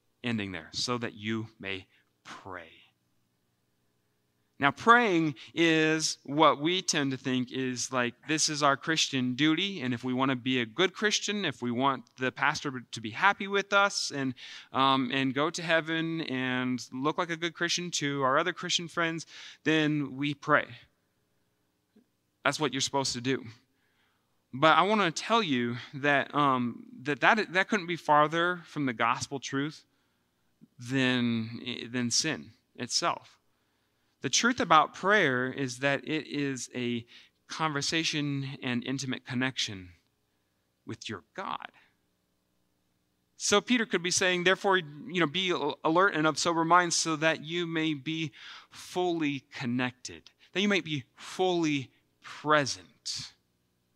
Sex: male